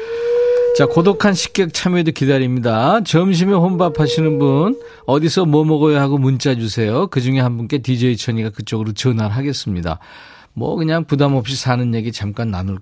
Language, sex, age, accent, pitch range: Korean, male, 40-59, native, 115-170 Hz